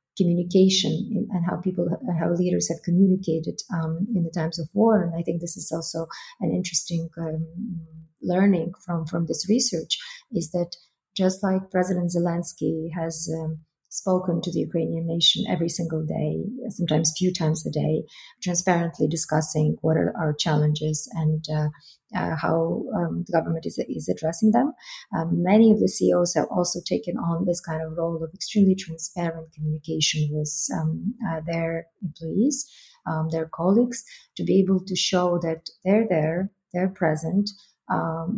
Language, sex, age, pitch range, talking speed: English, female, 30-49, 160-190 Hz, 160 wpm